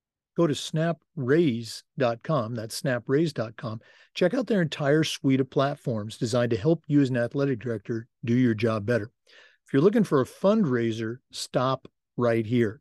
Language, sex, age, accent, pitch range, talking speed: English, male, 50-69, American, 125-165 Hz, 155 wpm